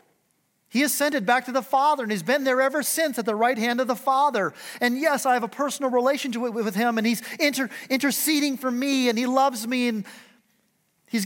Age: 40-59